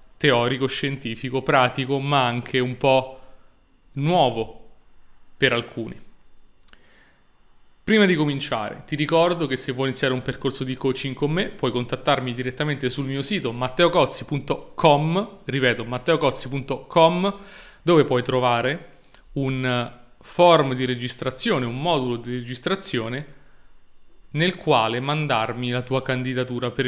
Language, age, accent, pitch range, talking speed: Italian, 30-49, native, 125-150 Hz, 115 wpm